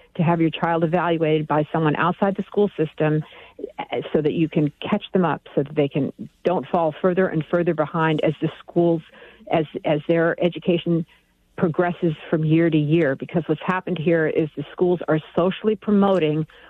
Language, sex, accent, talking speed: English, female, American, 180 wpm